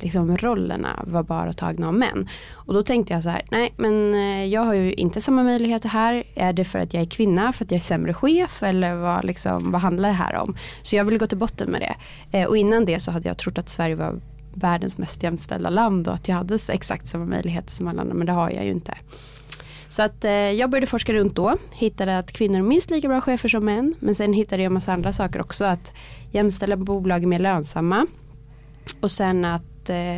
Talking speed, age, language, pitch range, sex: 230 wpm, 20-39, Swedish, 165-205 Hz, female